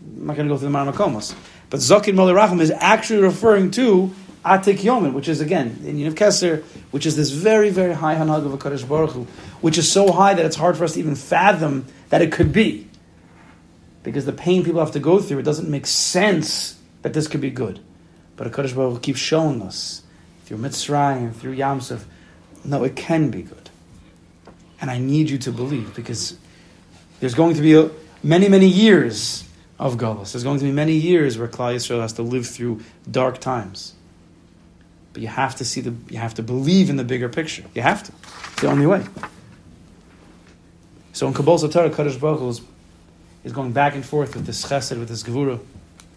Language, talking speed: English, 205 wpm